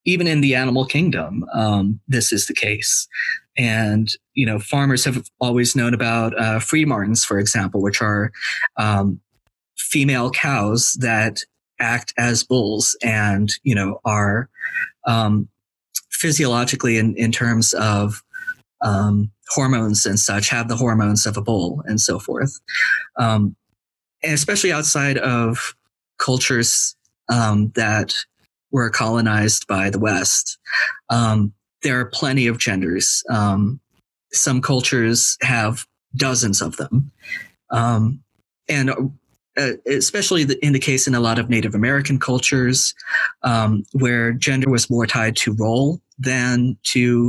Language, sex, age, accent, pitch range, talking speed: English, male, 20-39, American, 105-130 Hz, 135 wpm